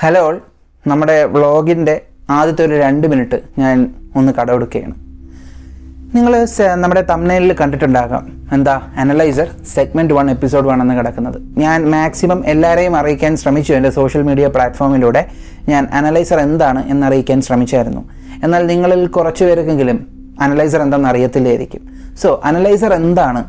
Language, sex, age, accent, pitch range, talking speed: Malayalam, male, 30-49, native, 130-170 Hz, 125 wpm